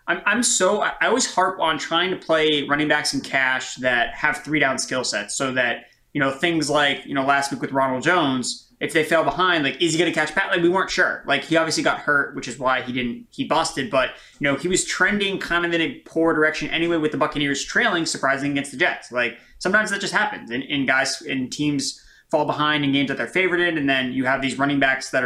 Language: English